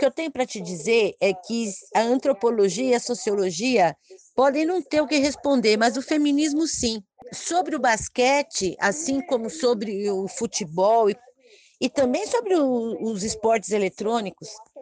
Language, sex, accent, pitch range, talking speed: Portuguese, female, Brazilian, 200-280 Hz, 160 wpm